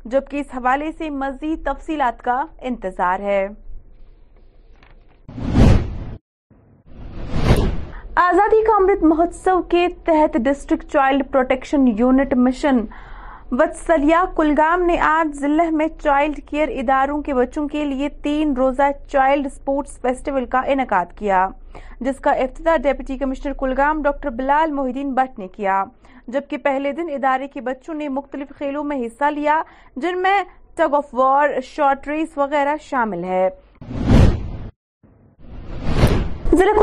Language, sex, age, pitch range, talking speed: Urdu, female, 30-49, 265-310 Hz, 125 wpm